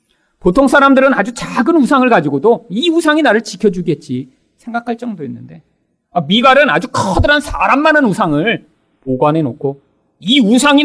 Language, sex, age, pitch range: Korean, male, 40-59, 160-265 Hz